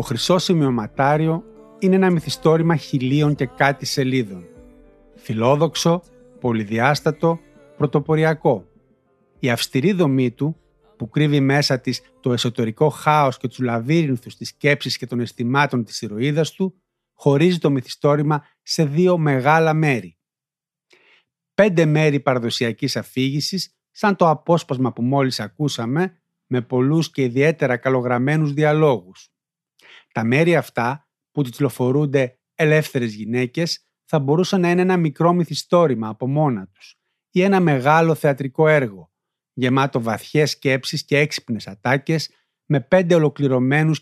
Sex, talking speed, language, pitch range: male, 125 wpm, Greek, 125-160 Hz